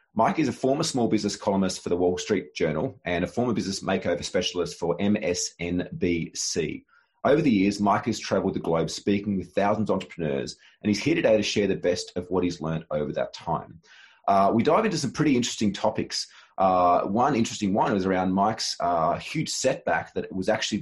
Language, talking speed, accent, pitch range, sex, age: English, 200 wpm, Australian, 90-105 Hz, male, 30-49